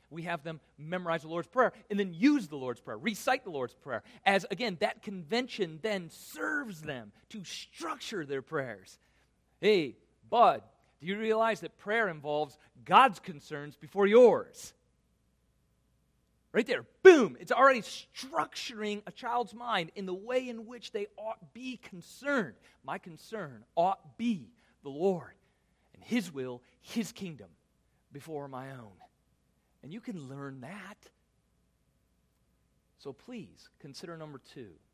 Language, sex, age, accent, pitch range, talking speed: English, male, 40-59, American, 125-200 Hz, 140 wpm